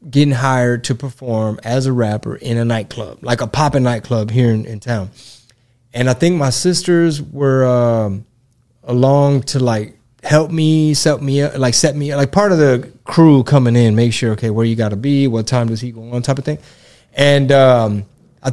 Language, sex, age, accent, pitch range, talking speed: English, male, 20-39, American, 120-160 Hz, 205 wpm